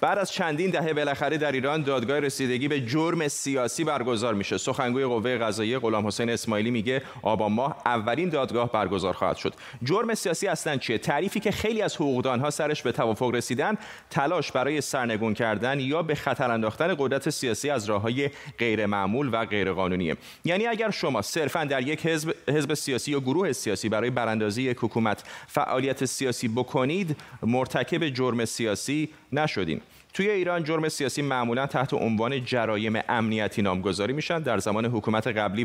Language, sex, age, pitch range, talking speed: Persian, male, 30-49, 115-150 Hz, 165 wpm